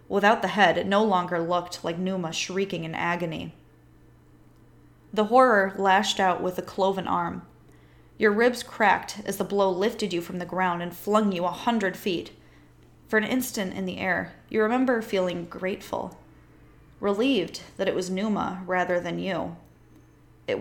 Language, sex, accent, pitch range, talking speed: English, female, American, 175-205 Hz, 165 wpm